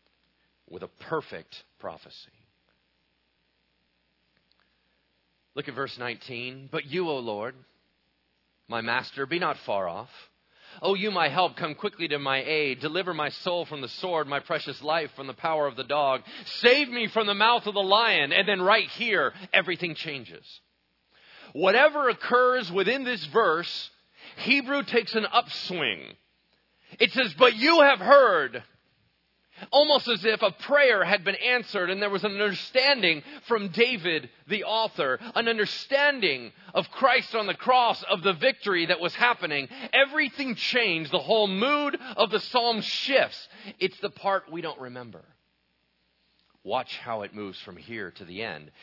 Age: 40-59